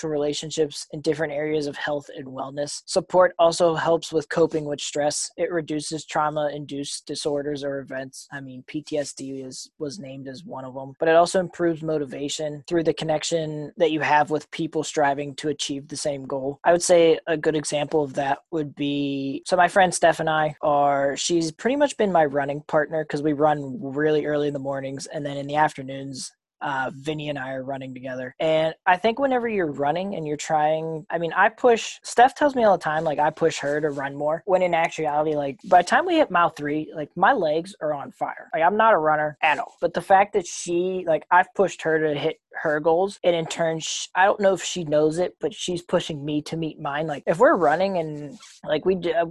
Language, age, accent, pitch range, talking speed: English, 20-39, American, 145-170 Hz, 220 wpm